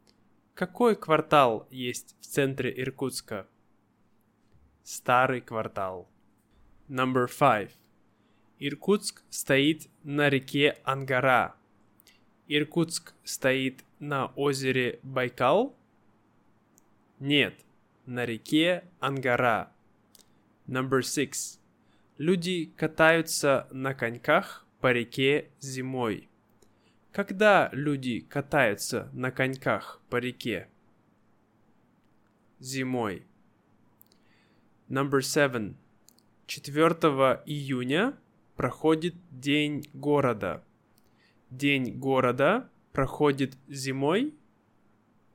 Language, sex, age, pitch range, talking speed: Russian, male, 20-39, 115-145 Hz, 70 wpm